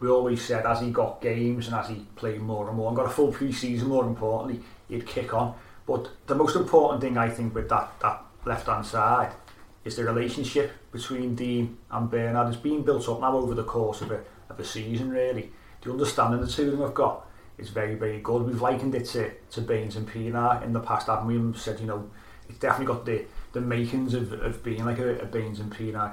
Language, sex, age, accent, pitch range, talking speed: English, male, 30-49, British, 115-125 Hz, 235 wpm